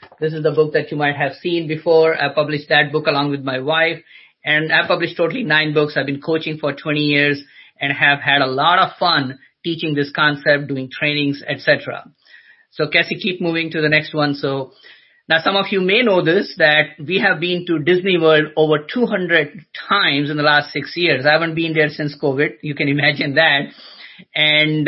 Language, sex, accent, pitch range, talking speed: English, male, Indian, 150-170 Hz, 205 wpm